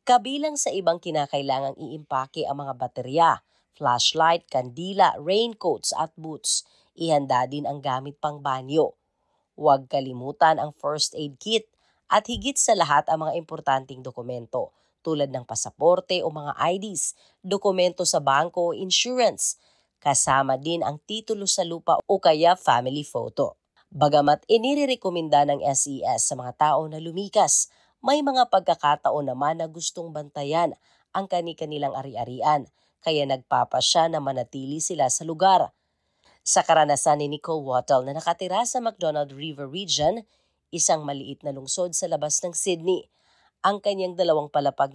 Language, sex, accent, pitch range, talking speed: Filipino, female, native, 140-185 Hz, 140 wpm